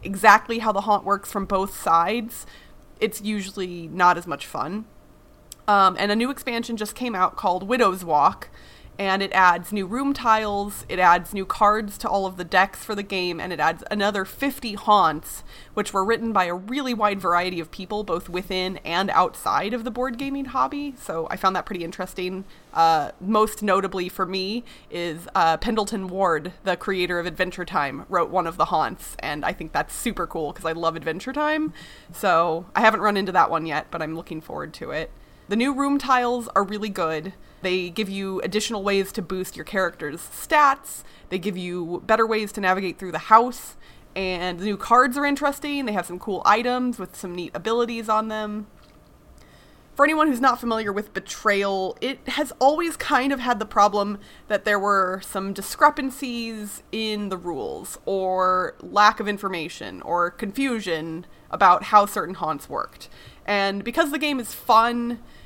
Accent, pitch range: American, 185-230 Hz